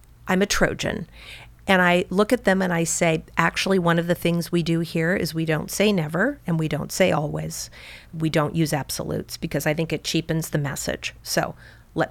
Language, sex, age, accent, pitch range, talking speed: English, female, 40-59, American, 155-185 Hz, 210 wpm